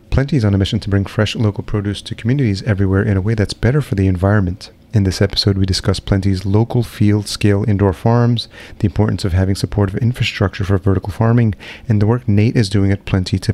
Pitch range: 95-115 Hz